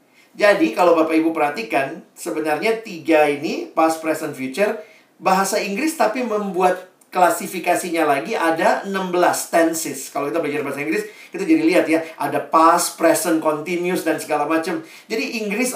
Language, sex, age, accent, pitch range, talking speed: Indonesian, male, 50-69, native, 160-210 Hz, 140 wpm